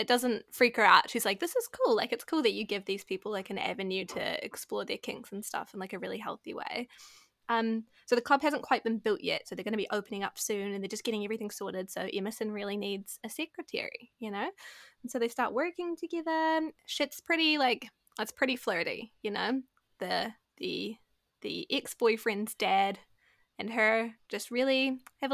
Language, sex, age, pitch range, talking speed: English, female, 10-29, 215-265 Hz, 210 wpm